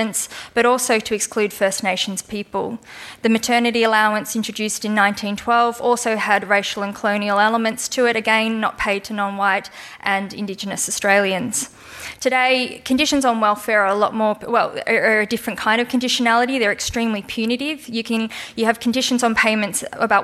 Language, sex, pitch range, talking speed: English, female, 205-235 Hz, 165 wpm